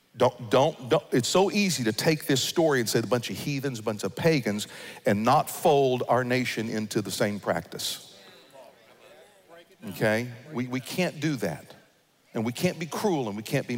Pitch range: 120-160 Hz